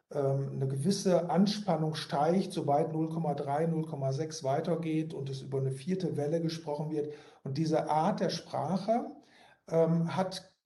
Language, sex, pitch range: German, male, 155-190 Hz